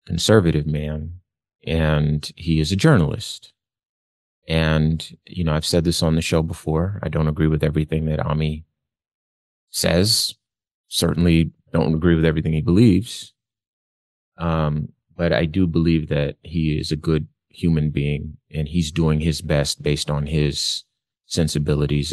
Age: 30-49